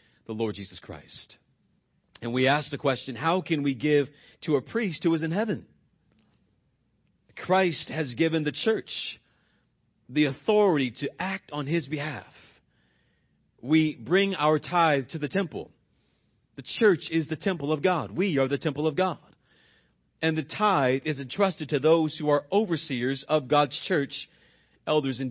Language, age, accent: English, 40-59, American